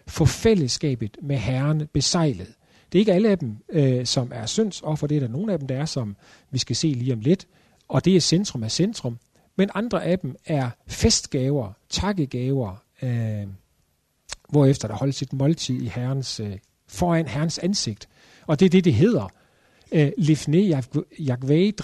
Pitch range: 120-170 Hz